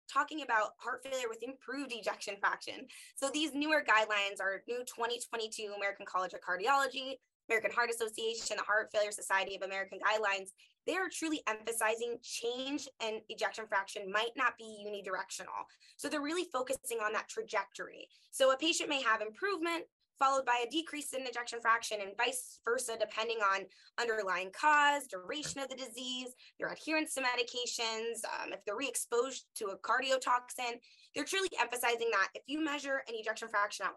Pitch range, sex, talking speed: 205-270 Hz, female, 170 wpm